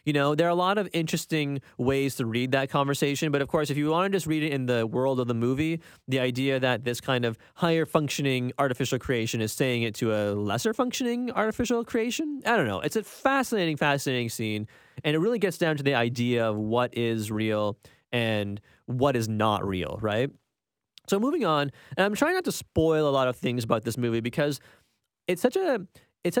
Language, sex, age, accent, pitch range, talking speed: English, male, 30-49, American, 120-175 Hz, 215 wpm